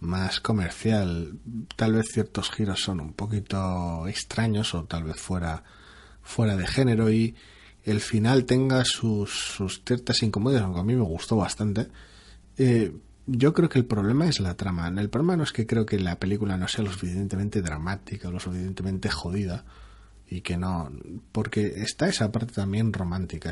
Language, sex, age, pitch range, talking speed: Spanish, male, 30-49, 95-115 Hz, 170 wpm